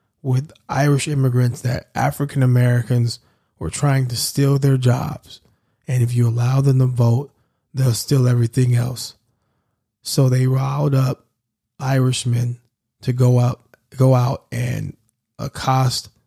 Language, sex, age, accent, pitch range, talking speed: English, male, 20-39, American, 120-135 Hz, 120 wpm